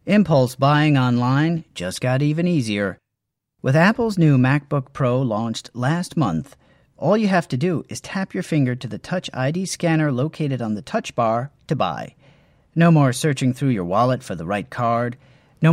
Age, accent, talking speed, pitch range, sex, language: 40-59, American, 180 wpm, 125-160 Hz, male, English